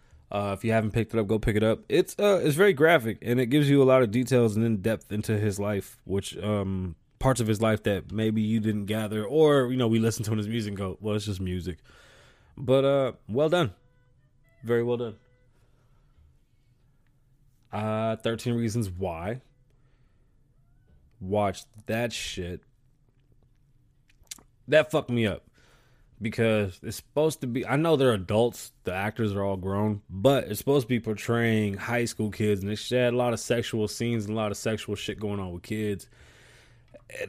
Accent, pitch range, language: American, 105-125 Hz, English